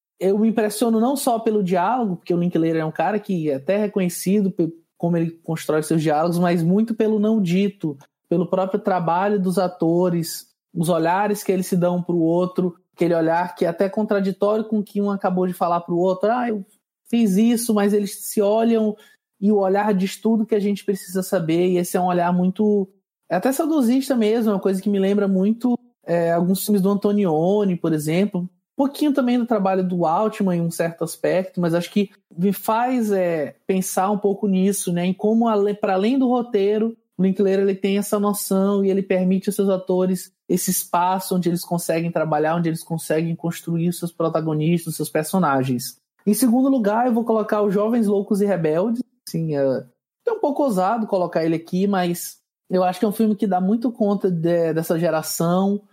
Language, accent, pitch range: Portuguese, Brazilian, 175-210 Hz